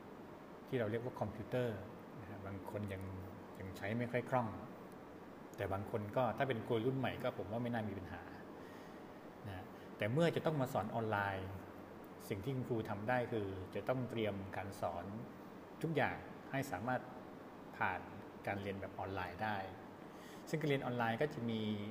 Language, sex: Thai, male